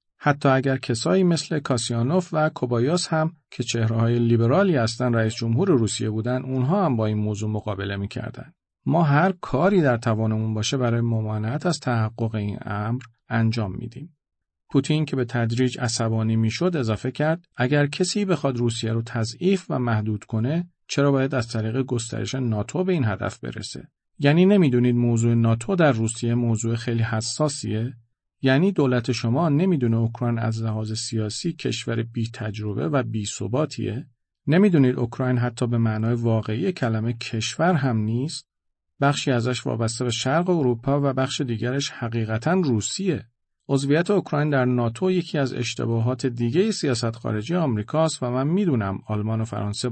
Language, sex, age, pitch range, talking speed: Persian, male, 40-59, 115-145 Hz, 150 wpm